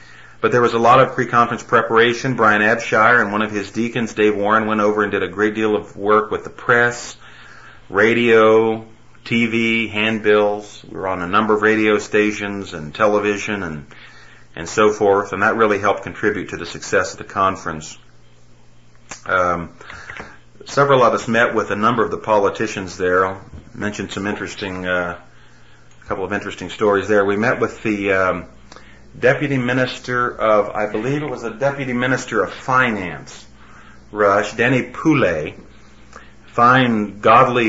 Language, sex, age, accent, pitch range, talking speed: English, male, 40-59, American, 105-120 Hz, 160 wpm